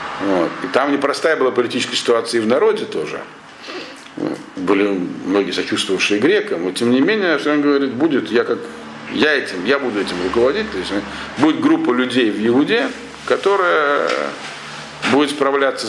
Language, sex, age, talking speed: Russian, male, 50-69, 160 wpm